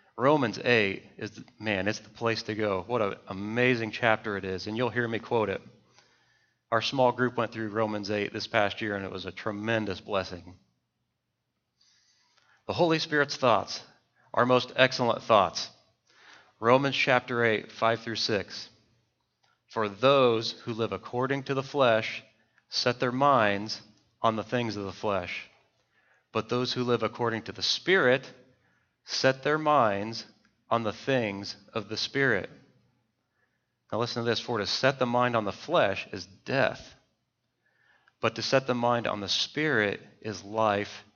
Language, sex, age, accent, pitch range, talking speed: English, male, 30-49, American, 105-125 Hz, 160 wpm